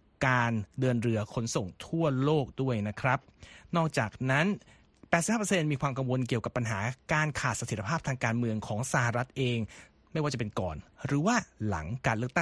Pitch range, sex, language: 120-160 Hz, male, Thai